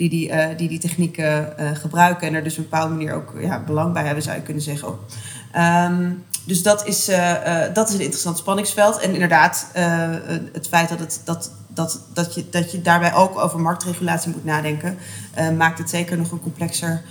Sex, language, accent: female, Dutch, Dutch